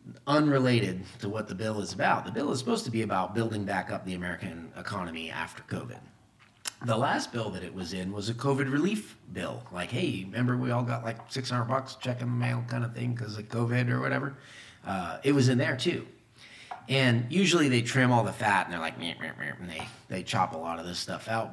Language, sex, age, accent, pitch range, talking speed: English, male, 30-49, American, 90-125 Hz, 225 wpm